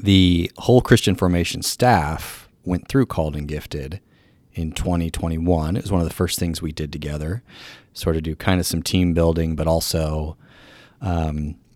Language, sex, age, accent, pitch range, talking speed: English, male, 30-49, American, 85-100 Hz, 170 wpm